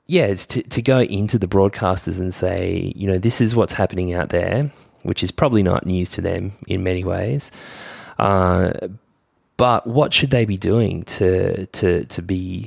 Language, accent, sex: German, Australian, male